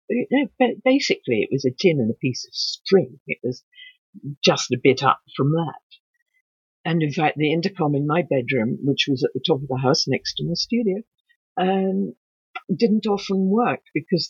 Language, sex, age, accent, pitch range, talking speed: English, female, 50-69, British, 140-220 Hz, 180 wpm